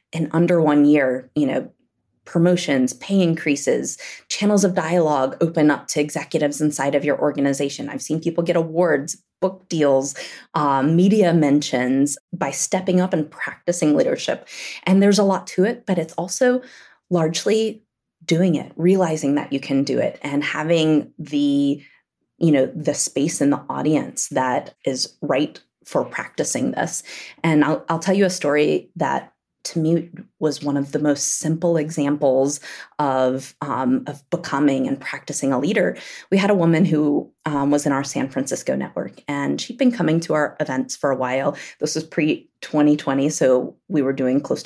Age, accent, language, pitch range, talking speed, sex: 20-39, American, English, 140-175 Hz, 170 wpm, female